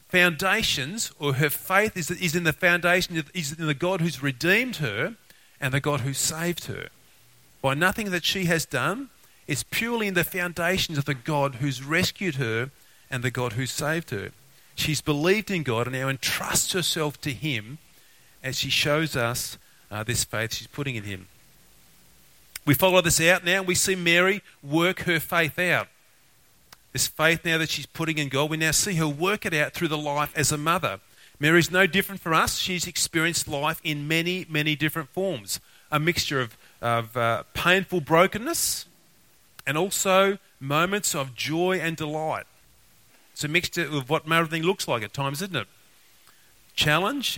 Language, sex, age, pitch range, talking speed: English, male, 40-59, 135-175 Hz, 180 wpm